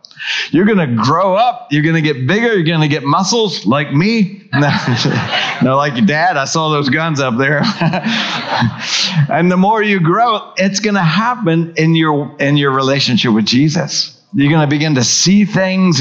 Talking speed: 185 wpm